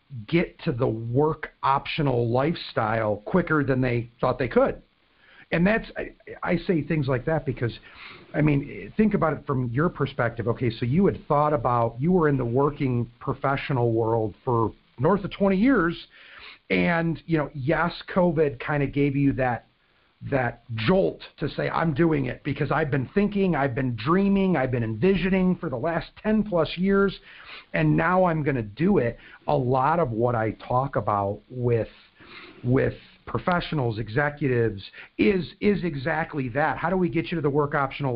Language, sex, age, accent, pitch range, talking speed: English, male, 50-69, American, 125-175 Hz, 175 wpm